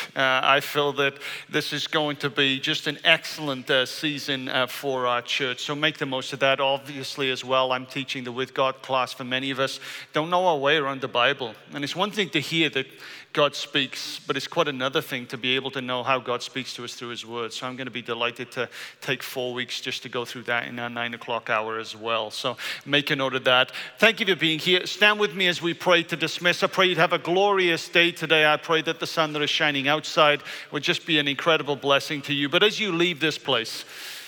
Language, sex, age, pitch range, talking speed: English, male, 40-59, 130-160 Hz, 250 wpm